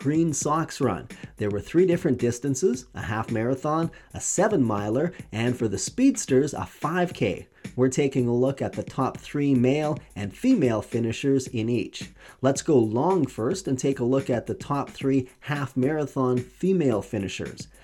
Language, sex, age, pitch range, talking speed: English, male, 30-49, 115-155 Hz, 170 wpm